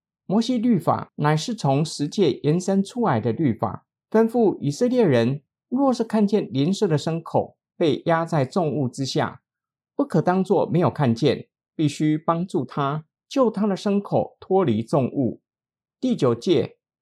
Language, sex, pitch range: Chinese, male, 135-205 Hz